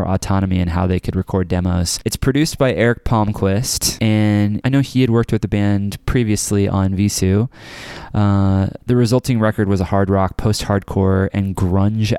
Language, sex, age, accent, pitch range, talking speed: English, male, 20-39, American, 95-110 Hz, 170 wpm